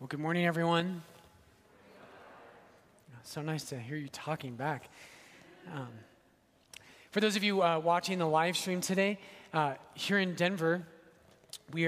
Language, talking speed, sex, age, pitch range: English, 135 wpm, male, 30-49, 155-195 Hz